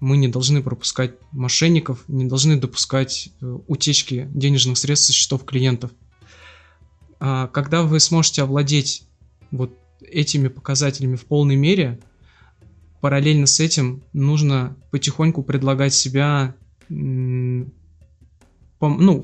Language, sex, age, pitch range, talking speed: Russian, male, 20-39, 125-145 Hz, 100 wpm